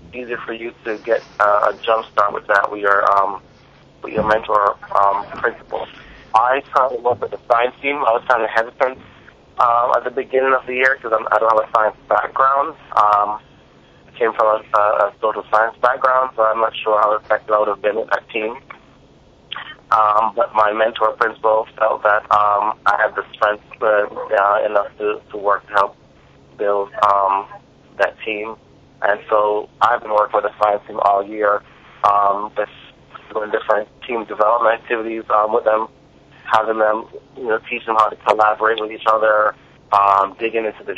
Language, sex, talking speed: English, male, 190 wpm